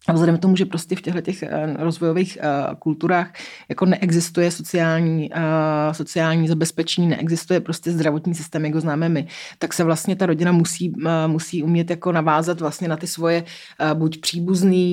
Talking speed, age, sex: 160 wpm, 30-49, female